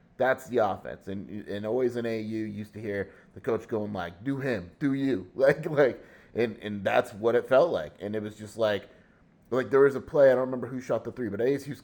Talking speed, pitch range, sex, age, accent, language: 245 wpm, 100-120 Hz, male, 30-49, American, English